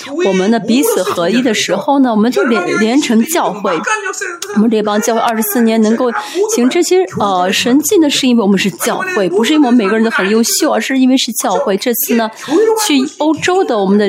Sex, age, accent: female, 20-39, native